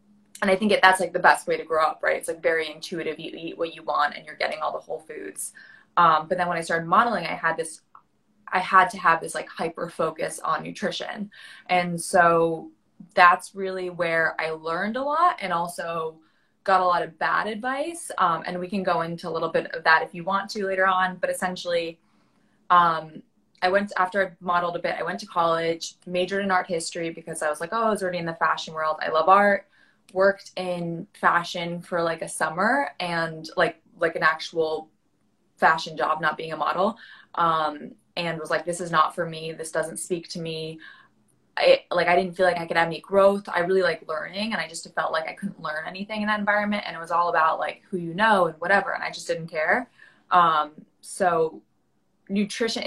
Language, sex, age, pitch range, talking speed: English, female, 20-39, 165-195 Hz, 220 wpm